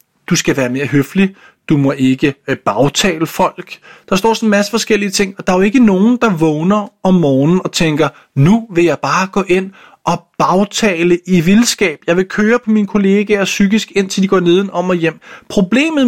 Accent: native